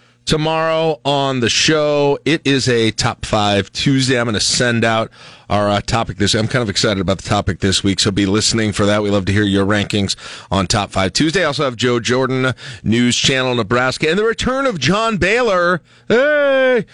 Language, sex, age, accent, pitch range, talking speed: English, male, 40-59, American, 110-160 Hz, 205 wpm